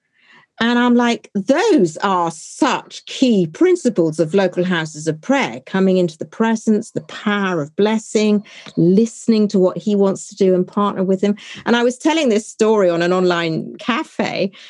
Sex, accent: female, British